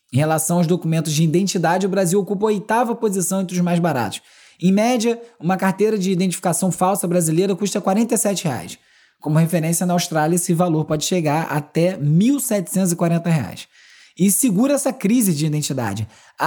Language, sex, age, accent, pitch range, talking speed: Portuguese, male, 20-39, Brazilian, 160-205 Hz, 170 wpm